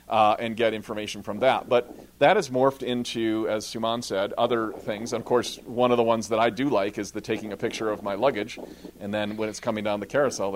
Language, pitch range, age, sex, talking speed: English, 105-125 Hz, 40-59, male, 245 wpm